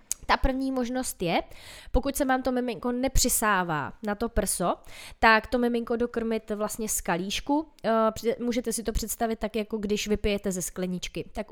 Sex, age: female, 20-39